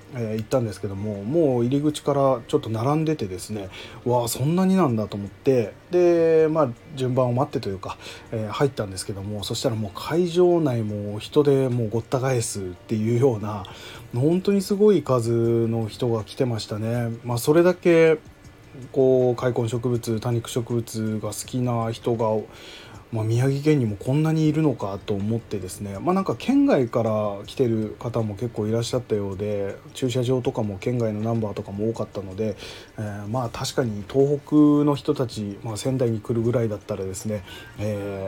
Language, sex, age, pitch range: Japanese, male, 20-39, 105-135 Hz